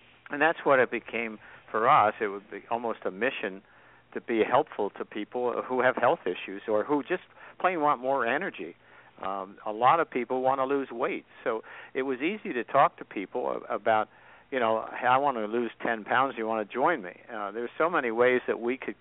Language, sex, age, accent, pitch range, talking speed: English, male, 60-79, American, 105-125 Hz, 220 wpm